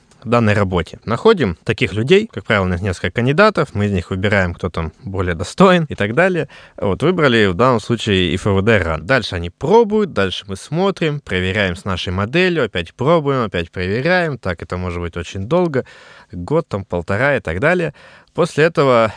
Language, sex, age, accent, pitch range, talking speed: Russian, male, 20-39, native, 95-135 Hz, 180 wpm